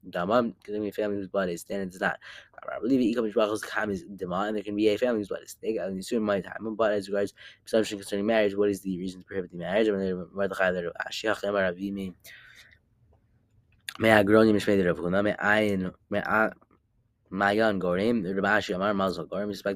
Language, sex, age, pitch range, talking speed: English, male, 20-39, 95-110 Hz, 110 wpm